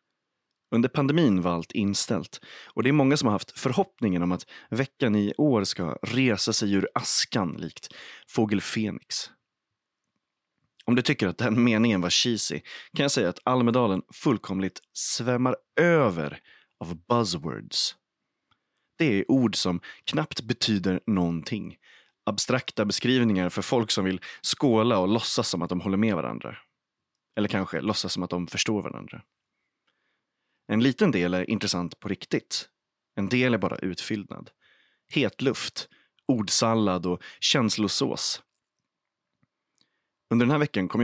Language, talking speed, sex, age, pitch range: Swedish, 140 wpm, male, 30-49, 90-120 Hz